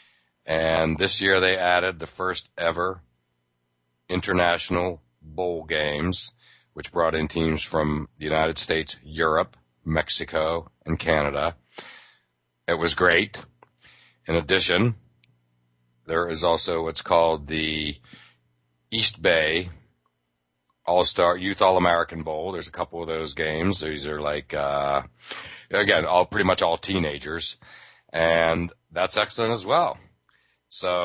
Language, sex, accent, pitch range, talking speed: English, male, American, 70-90 Hz, 120 wpm